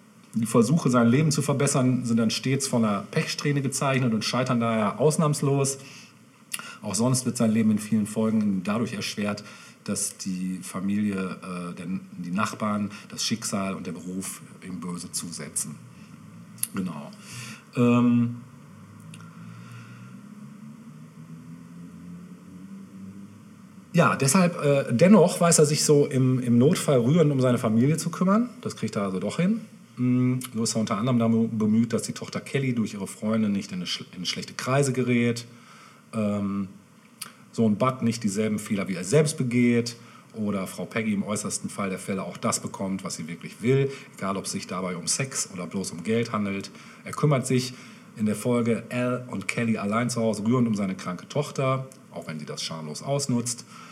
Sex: male